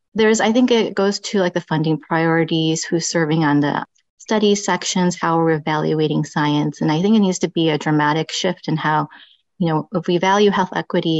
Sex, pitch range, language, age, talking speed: female, 160-195 Hz, English, 30-49, 210 wpm